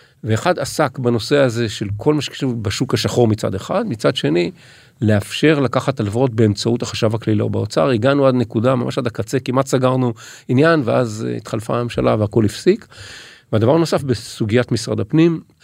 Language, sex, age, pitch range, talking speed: Hebrew, male, 40-59, 110-140 Hz, 155 wpm